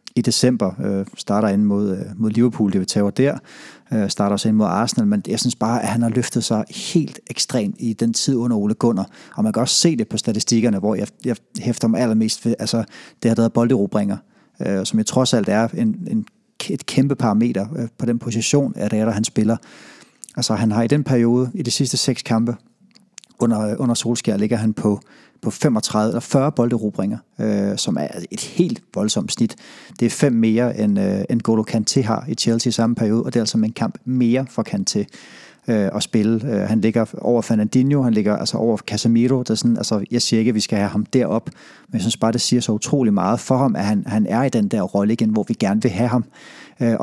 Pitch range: 110-135 Hz